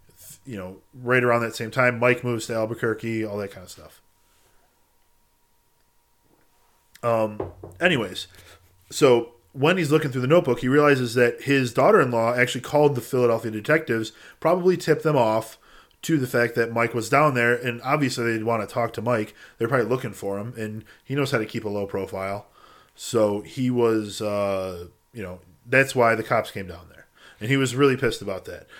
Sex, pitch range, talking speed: male, 110-135 Hz, 185 wpm